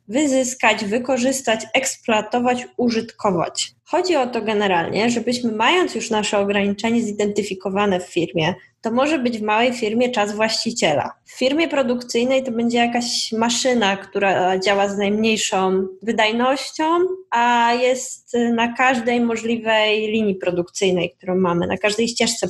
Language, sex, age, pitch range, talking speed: Polish, female, 10-29, 205-260 Hz, 130 wpm